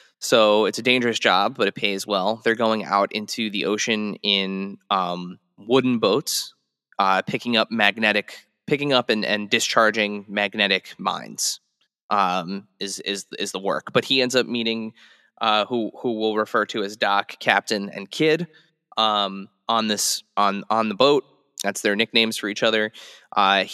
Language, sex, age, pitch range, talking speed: English, male, 20-39, 100-120 Hz, 165 wpm